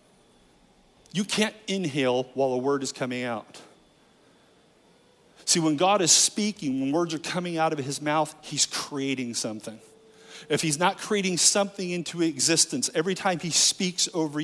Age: 40-59